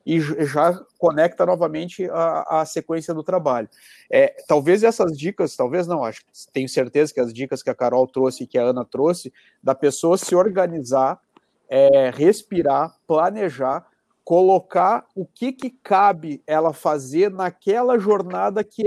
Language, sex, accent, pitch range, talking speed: Portuguese, male, Brazilian, 150-190 Hz, 150 wpm